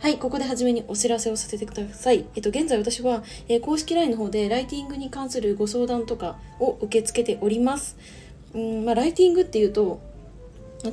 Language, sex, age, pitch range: Japanese, female, 20-39, 205-255 Hz